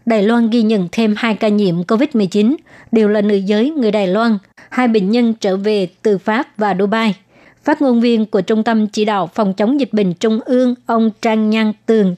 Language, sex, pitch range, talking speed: Vietnamese, male, 205-230 Hz, 210 wpm